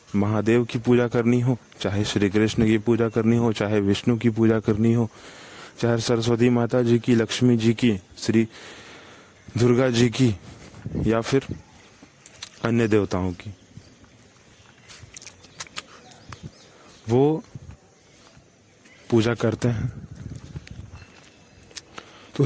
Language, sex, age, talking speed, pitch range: Hindi, male, 30-49, 105 wpm, 105-120 Hz